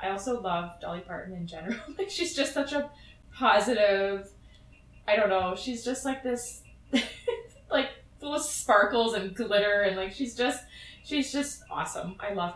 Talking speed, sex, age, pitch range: 165 wpm, female, 20-39, 185-235 Hz